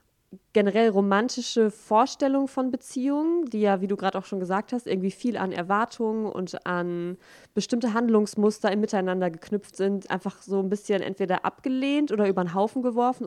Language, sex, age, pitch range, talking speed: German, female, 20-39, 180-215 Hz, 165 wpm